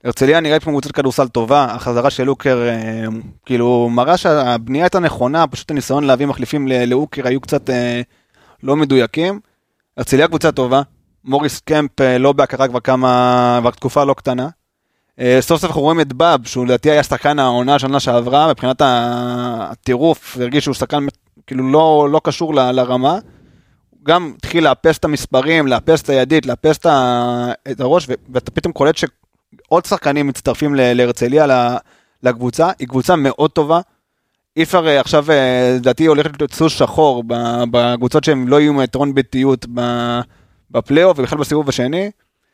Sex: male